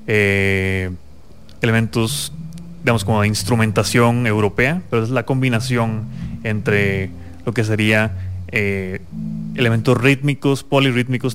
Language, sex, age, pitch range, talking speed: English, male, 20-39, 105-125 Hz, 100 wpm